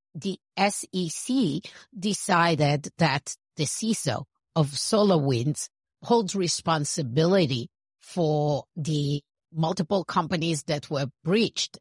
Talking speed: 85 wpm